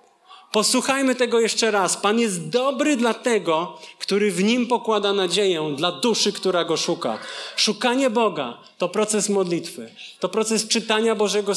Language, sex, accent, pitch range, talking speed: Polish, male, native, 165-215 Hz, 145 wpm